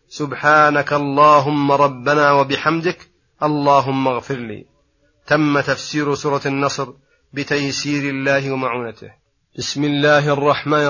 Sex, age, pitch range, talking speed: male, 30-49, 140-155 Hz, 95 wpm